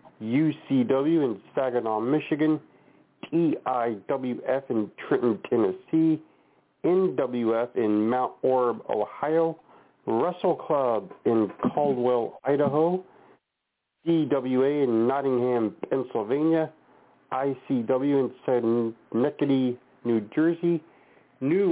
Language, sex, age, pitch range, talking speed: English, male, 40-59, 130-160 Hz, 75 wpm